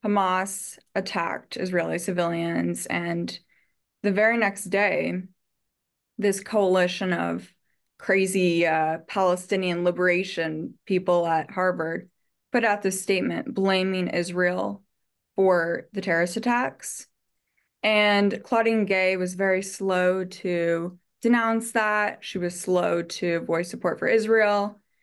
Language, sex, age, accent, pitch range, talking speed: English, female, 20-39, American, 180-205 Hz, 110 wpm